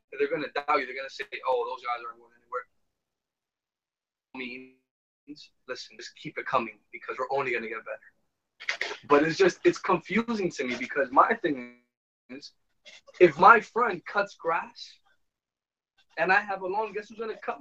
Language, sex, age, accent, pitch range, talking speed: English, male, 20-39, American, 175-250 Hz, 185 wpm